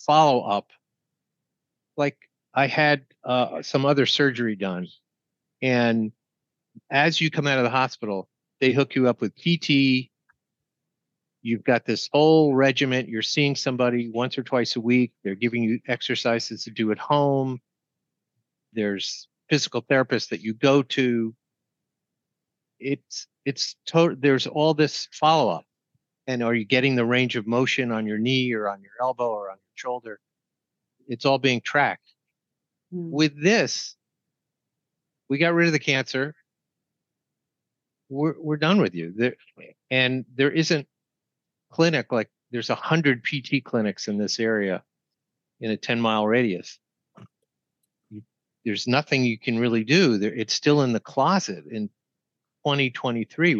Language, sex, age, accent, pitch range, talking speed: English, male, 50-69, American, 115-145 Hz, 140 wpm